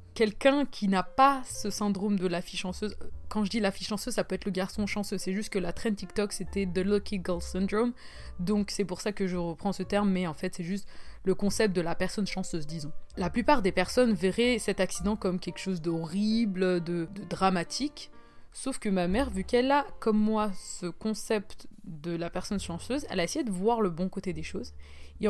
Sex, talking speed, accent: female, 225 wpm, French